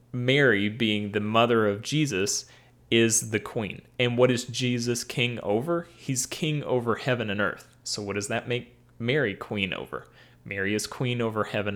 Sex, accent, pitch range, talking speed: male, American, 105-125 Hz, 175 wpm